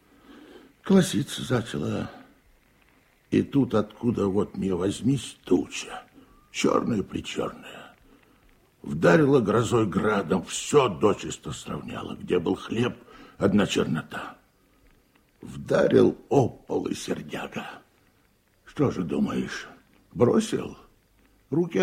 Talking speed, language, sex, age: 85 wpm, Russian, male, 60-79